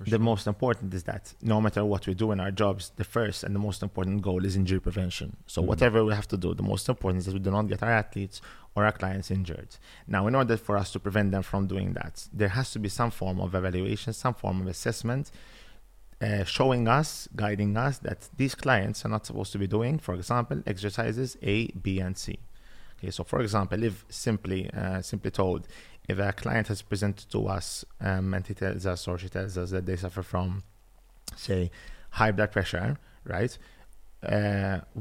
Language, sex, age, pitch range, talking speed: English, male, 30-49, 95-110 Hz, 210 wpm